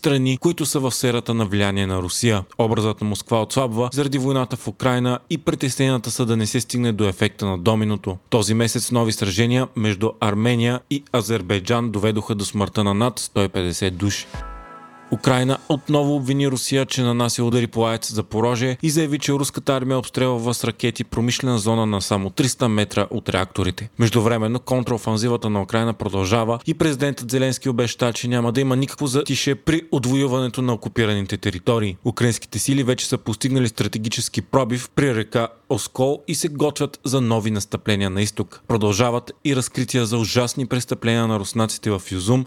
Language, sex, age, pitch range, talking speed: Bulgarian, male, 30-49, 110-130 Hz, 170 wpm